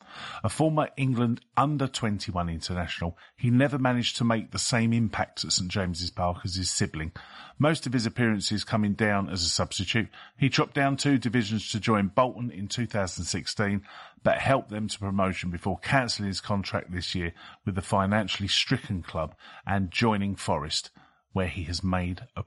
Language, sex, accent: English, male, British